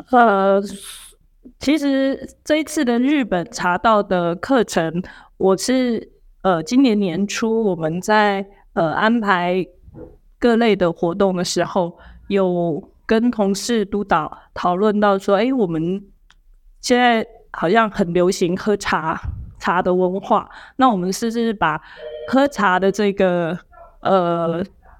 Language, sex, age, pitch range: Chinese, female, 20-39, 185-225 Hz